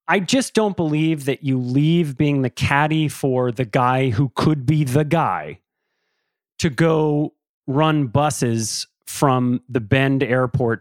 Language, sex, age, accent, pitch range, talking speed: English, male, 30-49, American, 120-155 Hz, 145 wpm